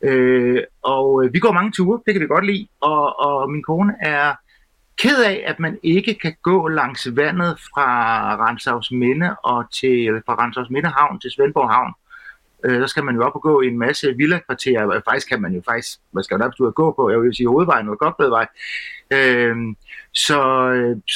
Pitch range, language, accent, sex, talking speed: 135-180 Hz, Danish, native, male, 215 wpm